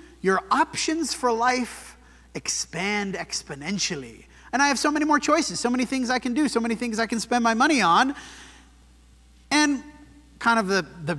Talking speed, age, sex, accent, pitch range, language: 175 wpm, 30-49, male, American, 175-250 Hz, English